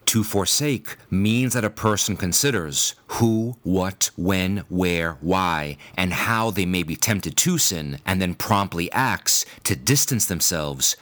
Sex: male